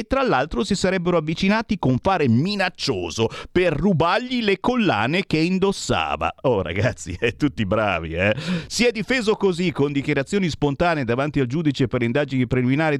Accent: native